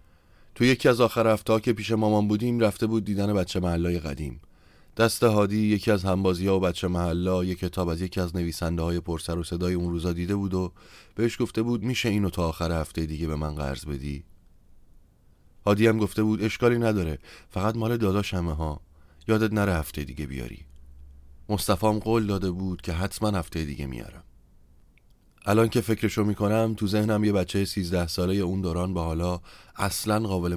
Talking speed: 185 wpm